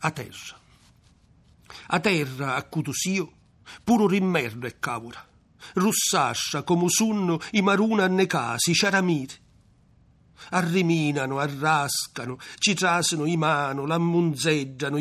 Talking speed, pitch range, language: 100 wpm, 140-175 Hz, Italian